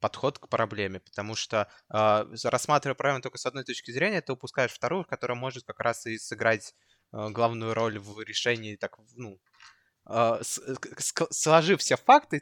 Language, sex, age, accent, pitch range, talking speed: Russian, male, 20-39, native, 115-150 Hz, 160 wpm